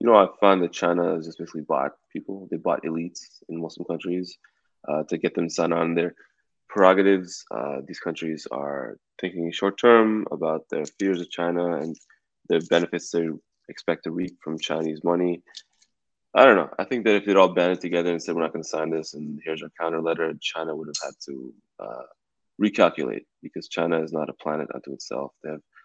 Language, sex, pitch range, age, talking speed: English, male, 80-95 Hz, 20-39, 200 wpm